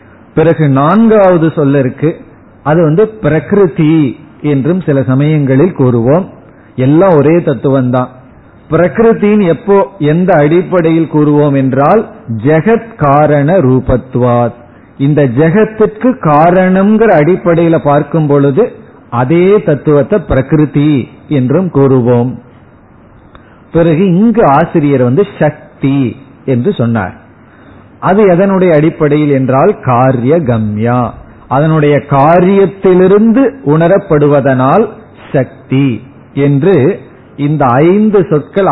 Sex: male